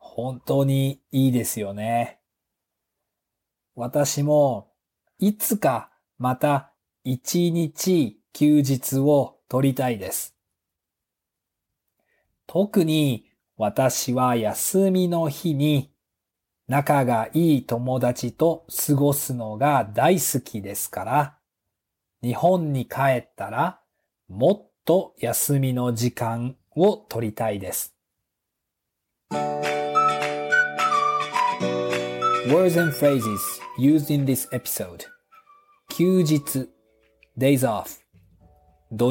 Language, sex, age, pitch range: Japanese, male, 40-59, 115-150 Hz